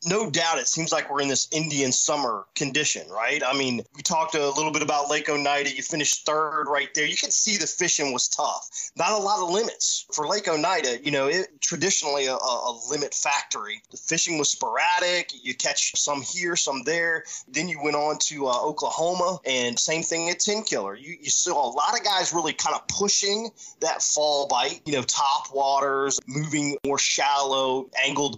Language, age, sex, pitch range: English, 20-39, male, 135-180 Hz